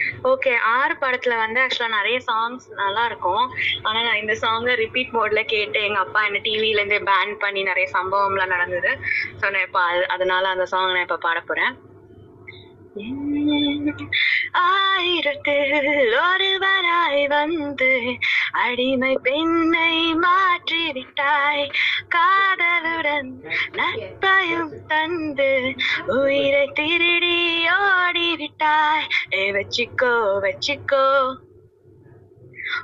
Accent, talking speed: native, 95 wpm